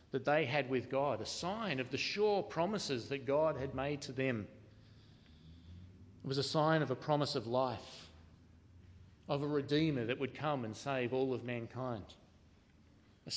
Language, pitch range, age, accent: English, 110-135 Hz, 40-59, Australian